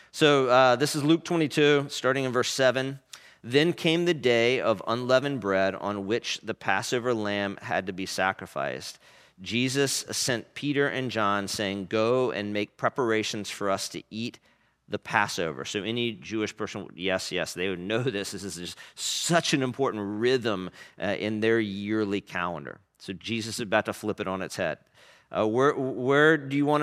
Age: 40-59